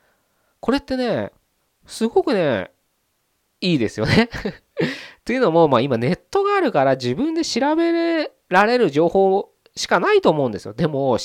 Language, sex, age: Japanese, male, 20-39